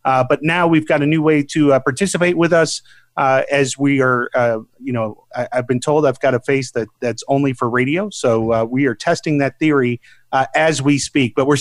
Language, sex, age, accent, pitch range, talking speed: English, male, 30-49, American, 130-165 Hz, 240 wpm